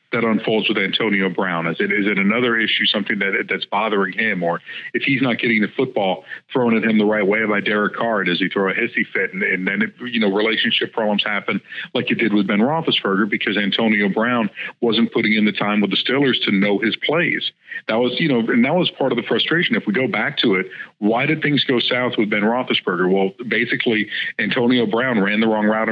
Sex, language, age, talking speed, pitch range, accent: male, English, 50-69, 235 wpm, 110-145 Hz, American